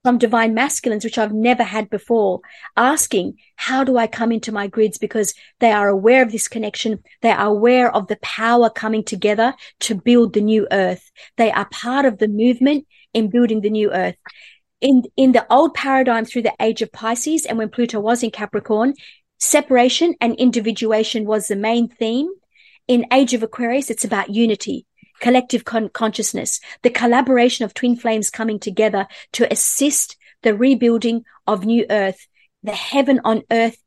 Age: 50-69